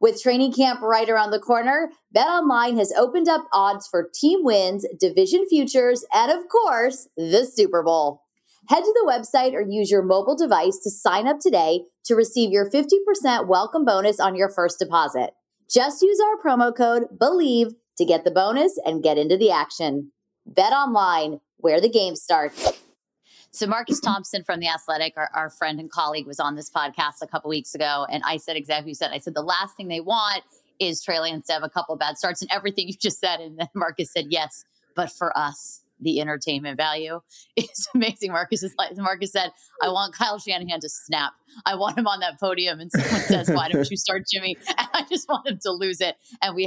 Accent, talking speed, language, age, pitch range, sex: American, 205 wpm, English, 30-49, 170-245 Hz, female